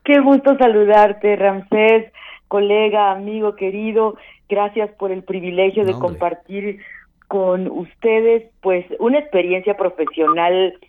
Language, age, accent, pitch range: Spanish, 40-59, Mexican, 185-235 Hz